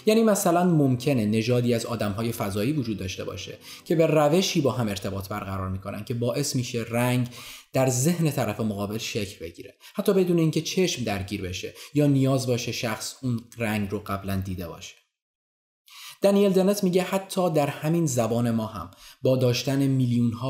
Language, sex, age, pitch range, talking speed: Persian, male, 20-39, 100-135 Hz, 165 wpm